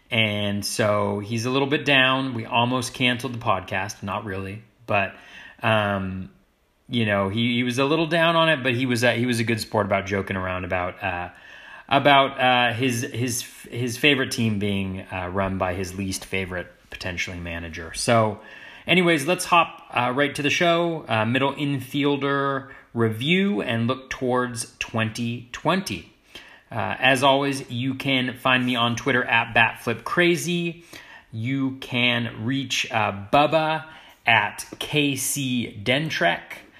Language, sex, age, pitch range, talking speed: English, male, 30-49, 110-140 Hz, 150 wpm